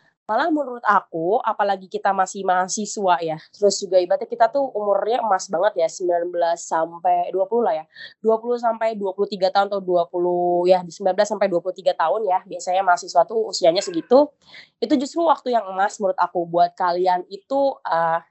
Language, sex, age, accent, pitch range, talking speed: Indonesian, female, 20-39, native, 175-225 Hz, 165 wpm